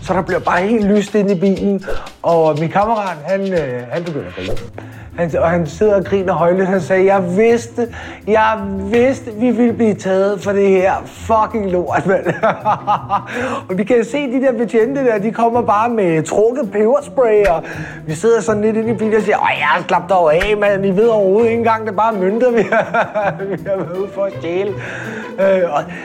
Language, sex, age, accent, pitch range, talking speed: Danish, male, 30-49, native, 155-220 Hz, 205 wpm